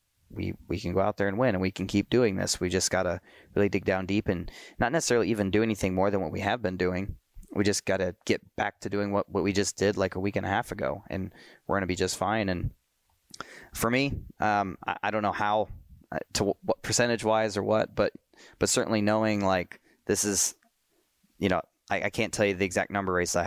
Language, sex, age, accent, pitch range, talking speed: English, male, 20-39, American, 95-105 Hz, 245 wpm